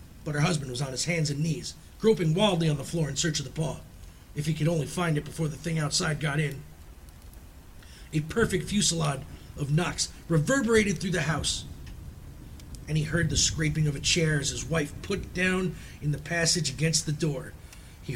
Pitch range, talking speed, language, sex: 105-155 Hz, 200 wpm, English, male